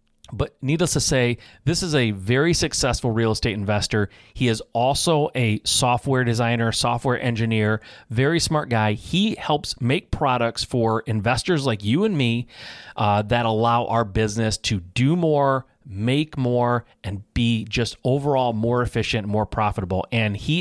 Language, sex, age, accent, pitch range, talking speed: English, male, 30-49, American, 105-130 Hz, 155 wpm